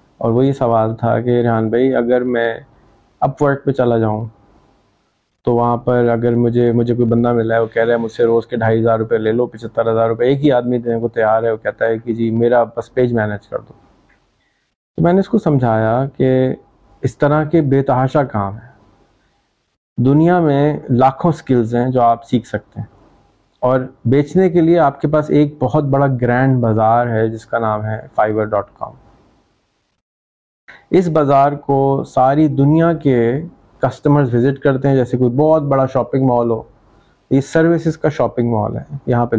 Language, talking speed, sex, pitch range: Urdu, 185 wpm, male, 115-140 Hz